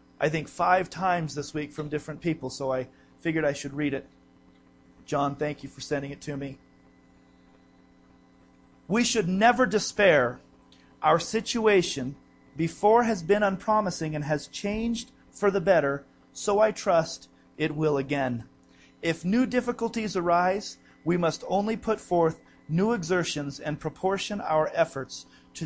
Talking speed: 145 wpm